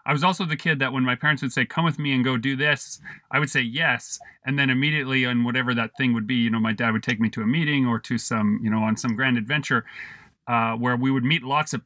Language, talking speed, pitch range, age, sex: English, 290 wpm, 115-140 Hz, 30-49, male